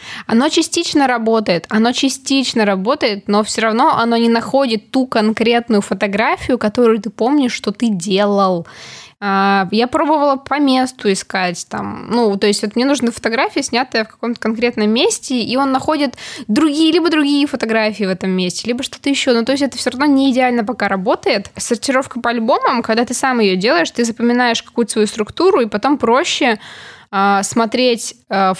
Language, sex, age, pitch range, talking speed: Russian, female, 20-39, 200-250 Hz, 165 wpm